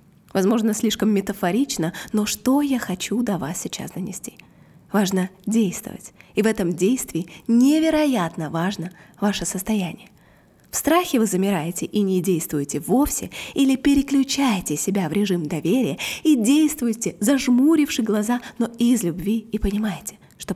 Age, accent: 20-39, native